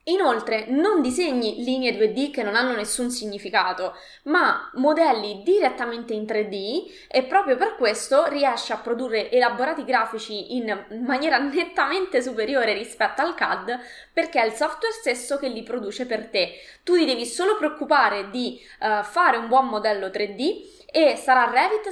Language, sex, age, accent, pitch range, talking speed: Italian, female, 20-39, native, 225-305 Hz, 150 wpm